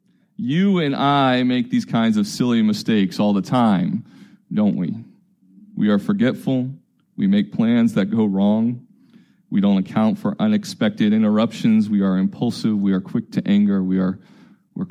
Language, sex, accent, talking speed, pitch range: English, male, American, 160 wpm, 190-215 Hz